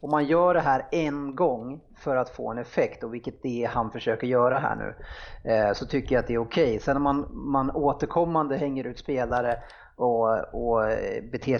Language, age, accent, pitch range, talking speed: Swedish, 30-49, Norwegian, 125-150 Hz, 205 wpm